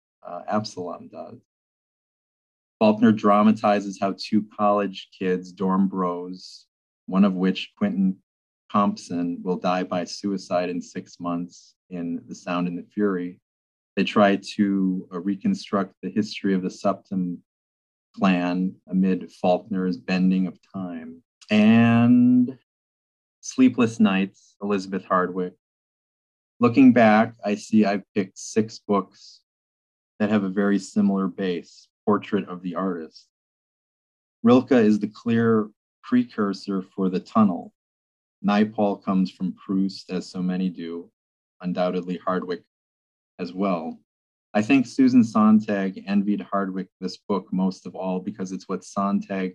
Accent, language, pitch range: American, English, 90-105 Hz